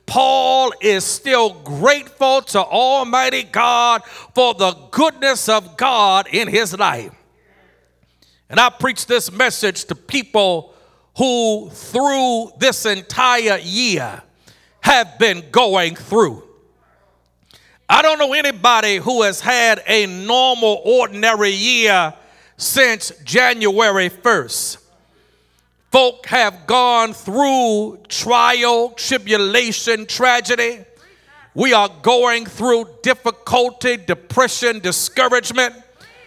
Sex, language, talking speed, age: male, English, 100 wpm, 50-69